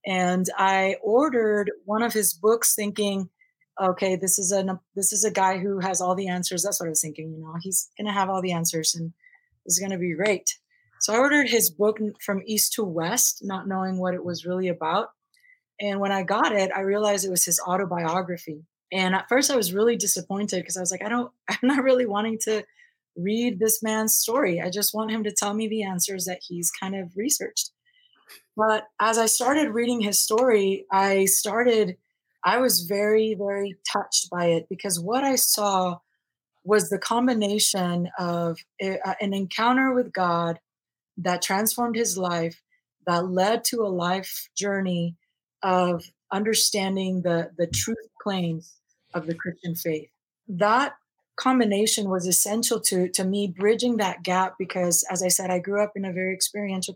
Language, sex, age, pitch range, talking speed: English, female, 20-39, 180-220 Hz, 185 wpm